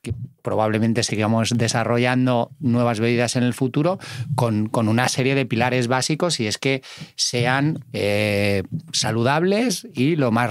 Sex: male